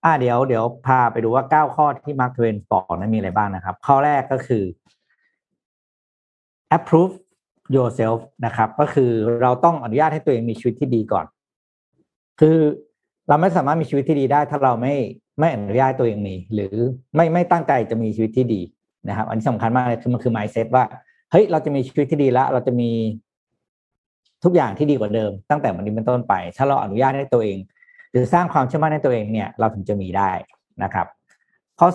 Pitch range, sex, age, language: 110-145 Hz, male, 60-79, Thai